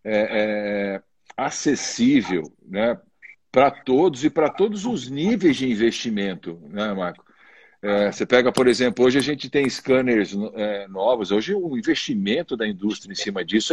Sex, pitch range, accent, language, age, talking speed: male, 100-155 Hz, Brazilian, Portuguese, 60-79, 155 wpm